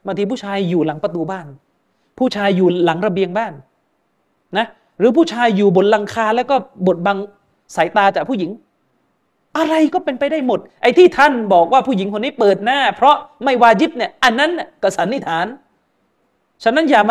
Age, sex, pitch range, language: 30-49, male, 205-280 Hz, Thai